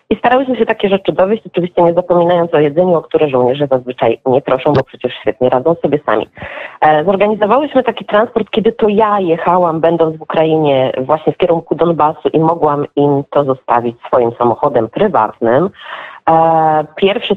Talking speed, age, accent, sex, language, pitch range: 160 wpm, 30-49, native, female, Polish, 150-200 Hz